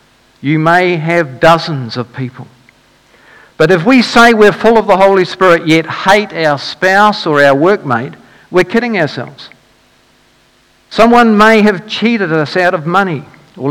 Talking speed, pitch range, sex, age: 155 wpm, 150-190 Hz, male, 50-69